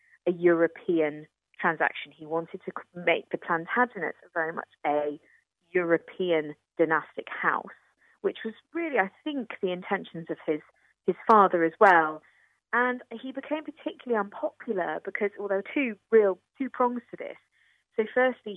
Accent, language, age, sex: British, English, 30-49, female